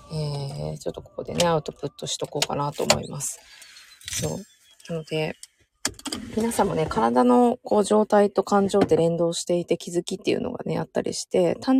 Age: 20-39